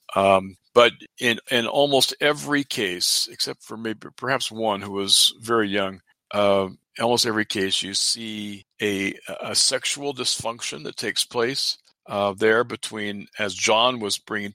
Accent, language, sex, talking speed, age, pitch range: American, English, male, 150 wpm, 50-69, 100-120 Hz